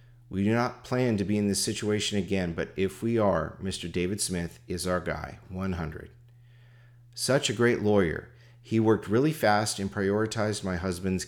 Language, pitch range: English, 95-120 Hz